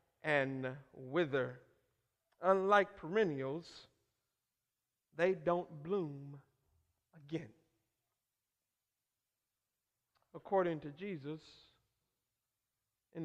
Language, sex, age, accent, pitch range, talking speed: English, male, 50-69, American, 115-180 Hz, 55 wpm